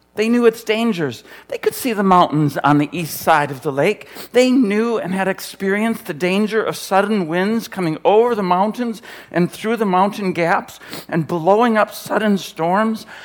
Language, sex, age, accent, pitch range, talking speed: English, male, 60-79, American, 155-210 Hz, 180 wpm